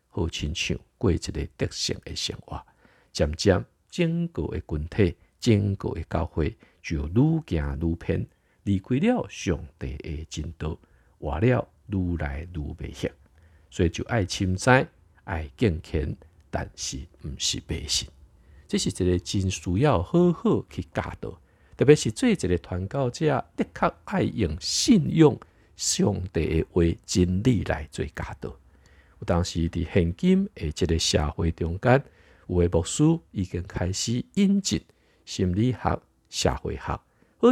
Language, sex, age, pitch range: Chinese, male, 50-69, 85-120 Hz